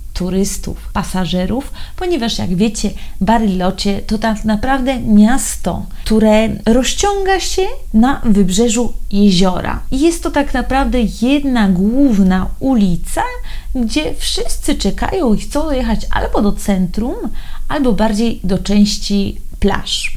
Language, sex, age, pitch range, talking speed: Polish, female, 30-49, 185-230 Hz, 115 wpm